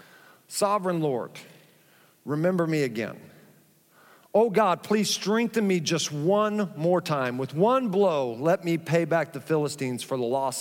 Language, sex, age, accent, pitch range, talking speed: English, male, 50-69, American, 150-195 Hz, 145 wpm